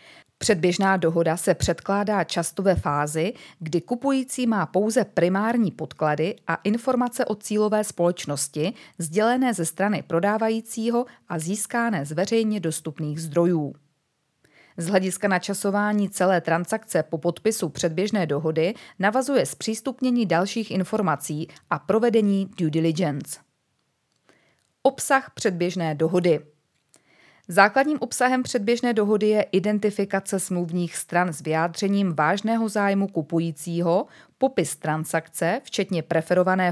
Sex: female